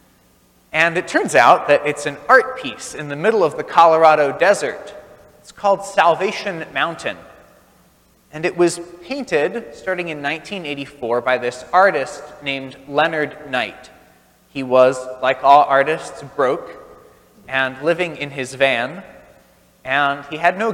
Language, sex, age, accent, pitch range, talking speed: English, male, 30-49, American, 130-175 Hz, 140 wpm